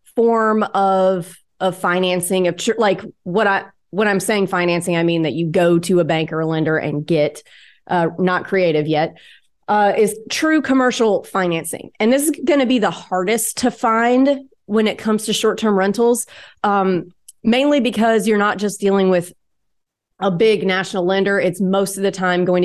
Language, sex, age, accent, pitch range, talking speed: English, female, 30-49, American, 180-215 Hz, 185 wpm